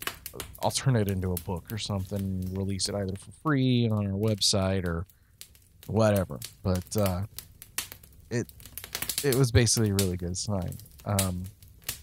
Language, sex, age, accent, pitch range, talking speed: English, male, 40-59, American, 90-110 Hz, 150 wpm